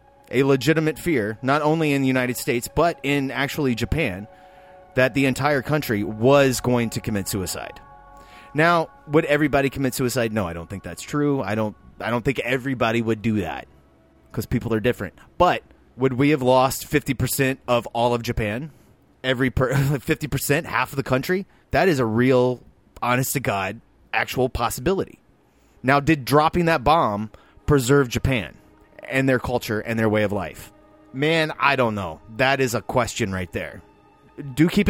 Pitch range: 115-145 Hz